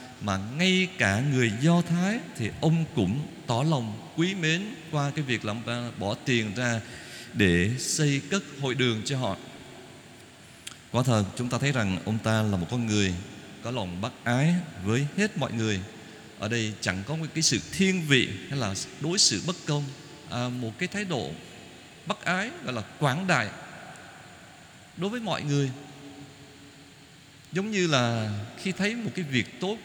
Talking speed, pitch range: 175 wpm, 115-160 Hz